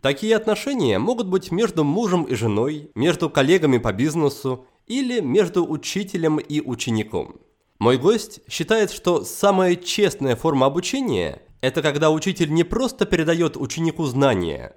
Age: 20-39